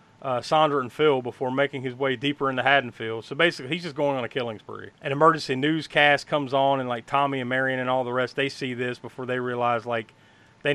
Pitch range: 130-155 Hz